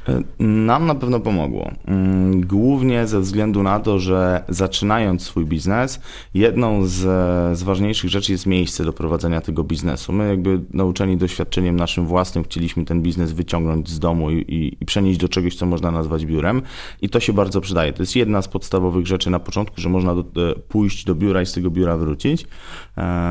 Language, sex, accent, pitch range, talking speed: Polish, male, native, 80-95 Hz, 185 wpm